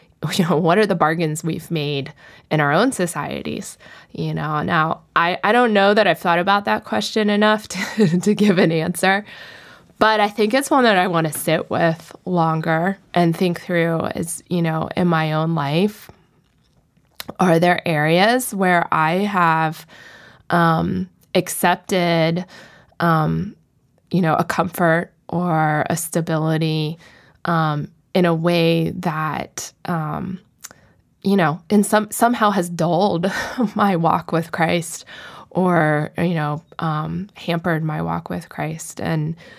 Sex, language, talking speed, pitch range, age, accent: female, English, 145 wpm, 160-185 Hz, 20-39, American